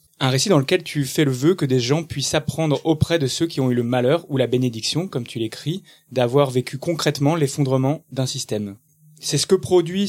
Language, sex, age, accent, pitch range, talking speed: French, male, 20-39, French, 120-150 Hz, 220 wpm